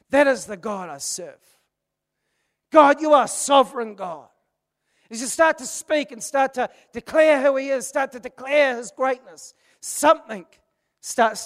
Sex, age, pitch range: male, 40-59, 205-285 Hz